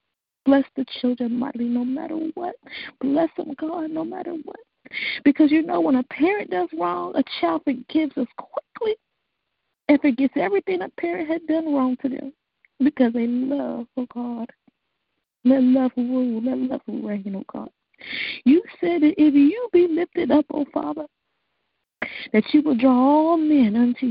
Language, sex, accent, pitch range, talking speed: English, female, American, 250-305 Hz, 165 wpm